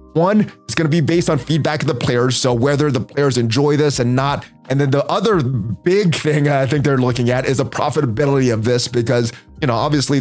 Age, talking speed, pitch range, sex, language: 20-39, 230 wpm, 125-160 Hz, male, English